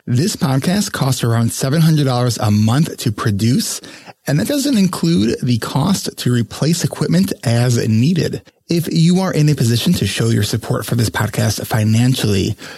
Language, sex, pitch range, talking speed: English, male, 115-155 Hz, 160 wpm